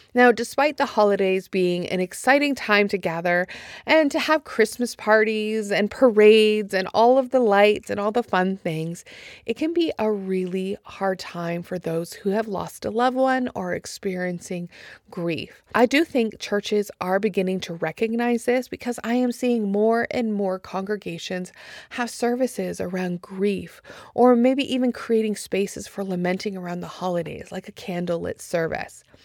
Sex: female